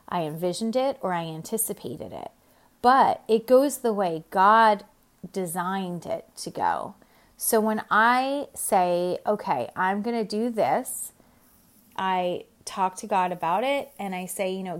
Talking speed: 155 wpm